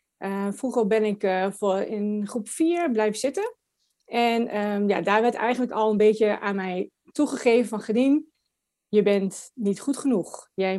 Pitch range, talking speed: 195-250 Hz, 170 wpm